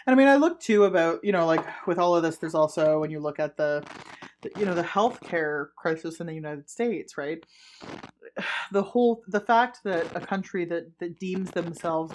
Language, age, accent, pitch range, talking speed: English, 20-39, American, 165-230 Hz, 210 wpm